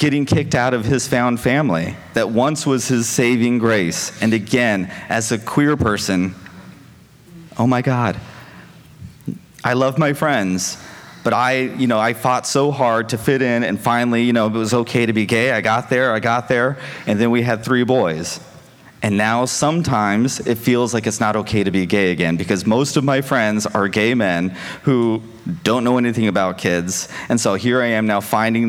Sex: male